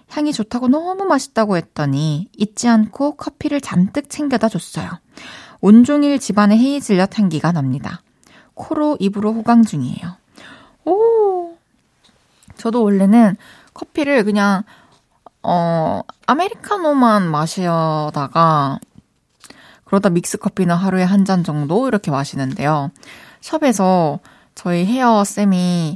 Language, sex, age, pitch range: Korean, female, 20-39, 170-245 Hz